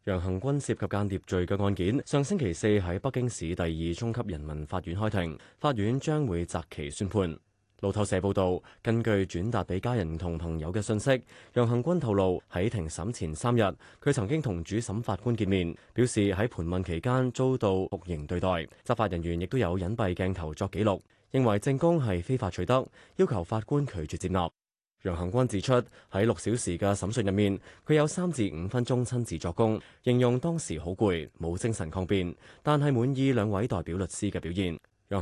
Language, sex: Chinese, male